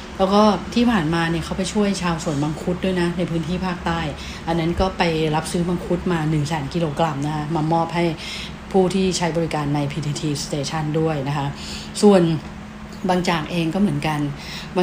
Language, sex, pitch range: English, female, 155-180 Hz